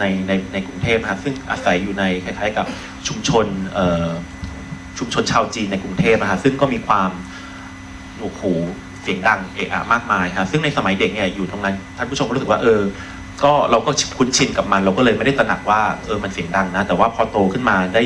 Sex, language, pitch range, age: male, Thai, 95-120 Hz, 30-49